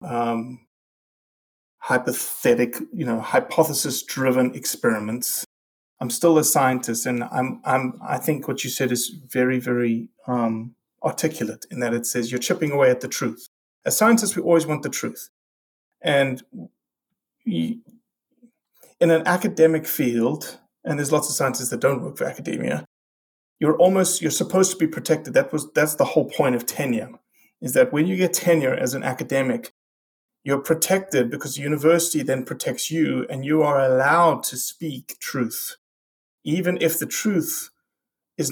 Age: 30-49